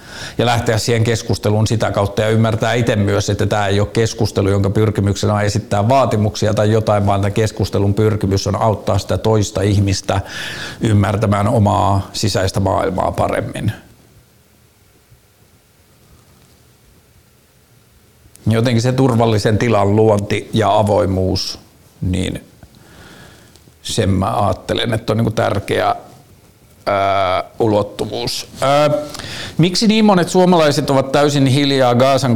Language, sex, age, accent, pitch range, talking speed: Finnish, male, 50-69, native, 105-130 Hz, 105 wpm